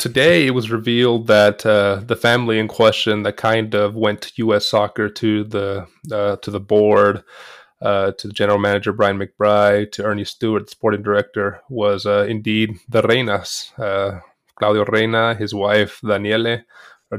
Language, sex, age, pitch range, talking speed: English, male, 20-39, 100-115 Hz, 165 wpm